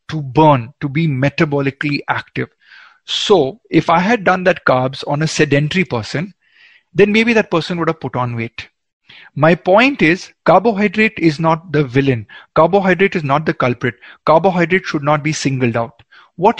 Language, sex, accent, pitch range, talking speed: Hindi, male, native, 140-165 Hz, 165 wpm